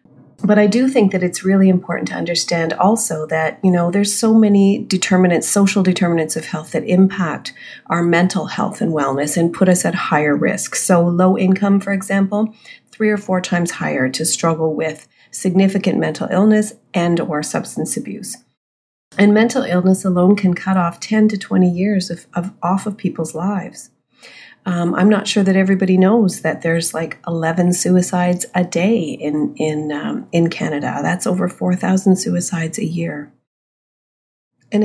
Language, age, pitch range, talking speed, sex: English, 40-59, 170-200 Hz, 165 wpm, female